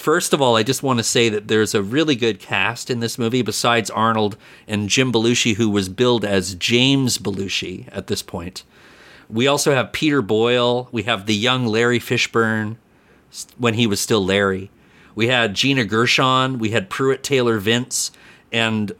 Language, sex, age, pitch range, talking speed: English, male, 40-59, 105-125 Hz, 180 wpm